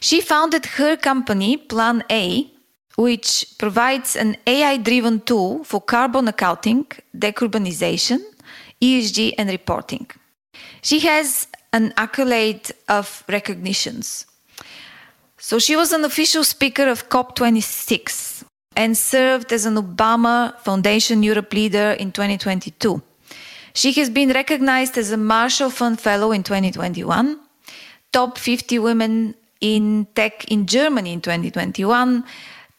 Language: English